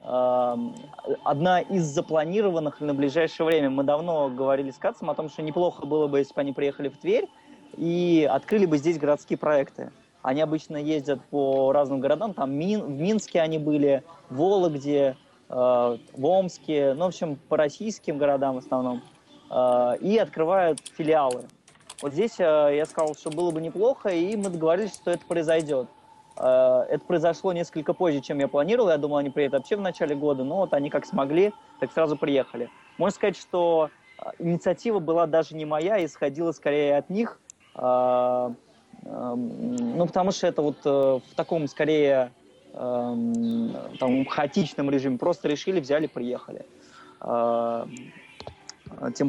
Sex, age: male, 20-39